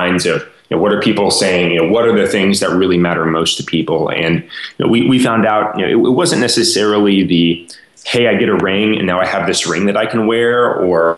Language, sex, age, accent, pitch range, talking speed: English, male, 20-39, American, 90-105 Hz, 220 wpm